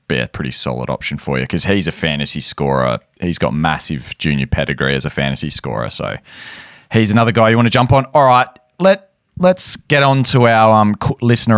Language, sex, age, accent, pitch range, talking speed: English, male, 20-39, Australian, 90-120 Hz, 205 wpm